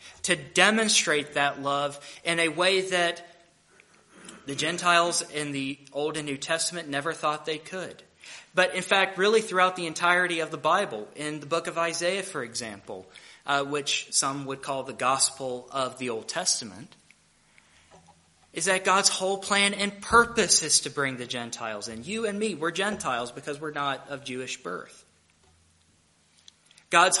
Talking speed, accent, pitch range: 160 wpm, American, 145-185 Hz